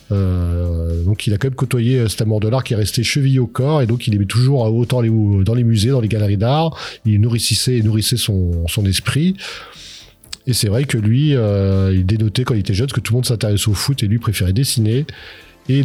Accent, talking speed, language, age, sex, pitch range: French, 230 wpm, French, 40-59, male, 105-140 Hz